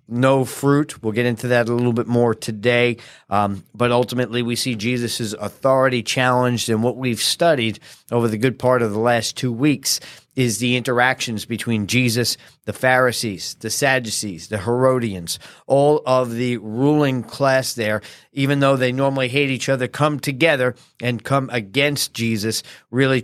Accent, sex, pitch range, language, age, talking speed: American, male, 115-135 Hz, English, 40-59, 165 wpm